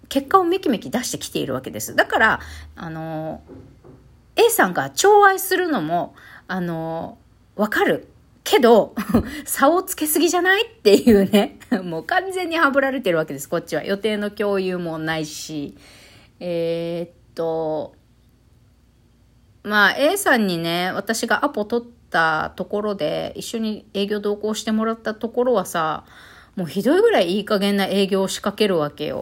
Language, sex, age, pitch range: Japanese, female, 40-59, 170-270 Hz